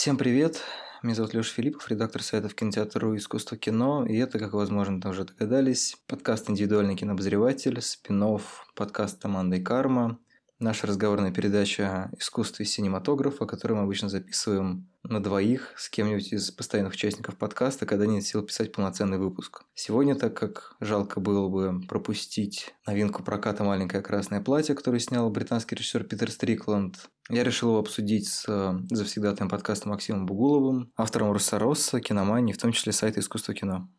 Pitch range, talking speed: 100-115 Hz, 155 wpm